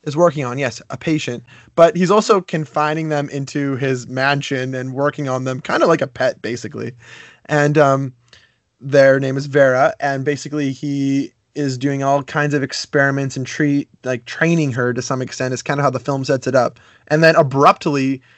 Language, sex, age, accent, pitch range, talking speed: English, male, 20-39, American, 130-155 Hz, 195 wpm